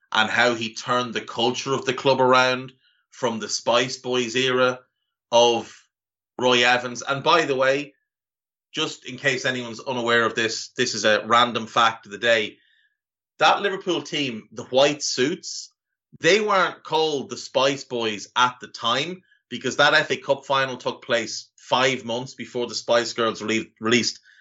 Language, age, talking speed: English, 30-49, 160 wpm